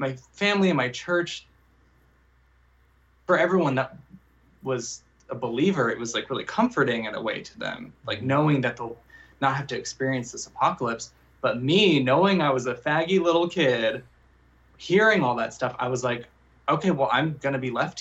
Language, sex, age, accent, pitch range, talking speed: English, male, 20-39, American, 115-135 Hz, 180 wpm